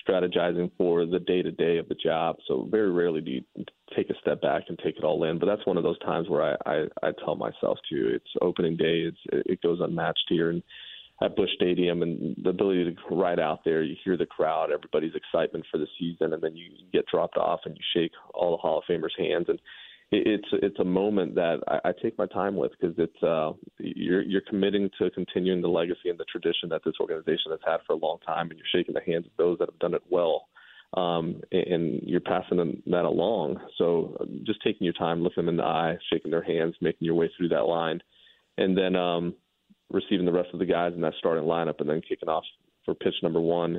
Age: 30-49